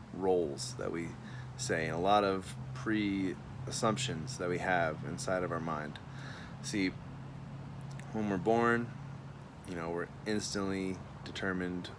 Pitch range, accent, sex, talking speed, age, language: 90-105 Hz, American, male, 125 wpm, 20-39, English